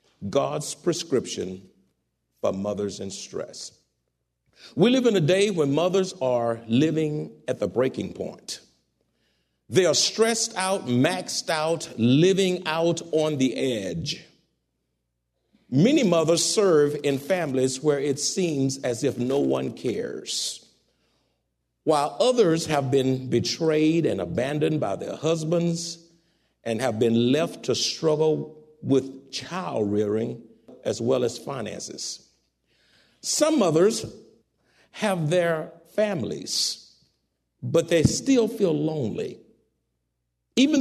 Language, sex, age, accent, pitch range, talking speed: English, male, 50-69, American, 125-205 Hz, 115 wpm